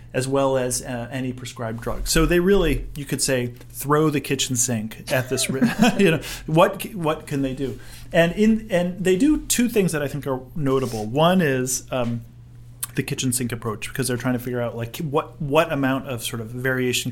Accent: American